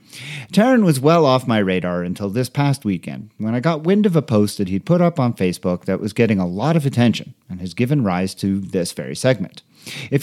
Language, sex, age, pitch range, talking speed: English, male, 40-59, 100-150 Hz, 230 wpm